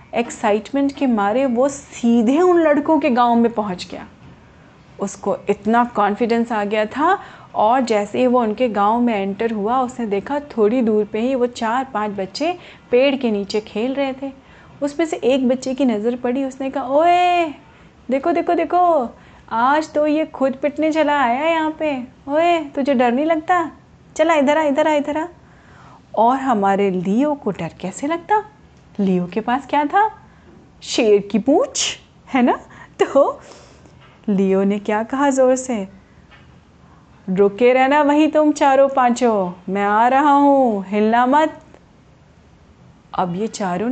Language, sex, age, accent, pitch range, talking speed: Hindi, female, 30-49, native, 215-290 Hz, 155 wpm